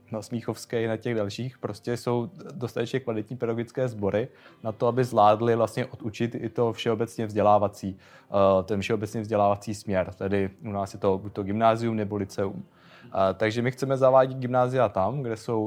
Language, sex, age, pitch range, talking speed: Czech, male, 20-39, 105-120 Hz, 165 wpm